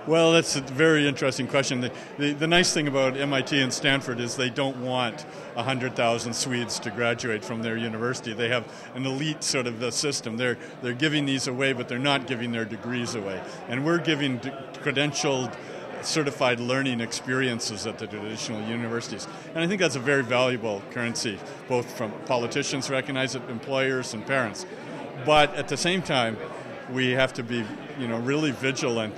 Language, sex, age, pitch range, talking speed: English, male, 50-69, 115-135 Hz, 180 wpm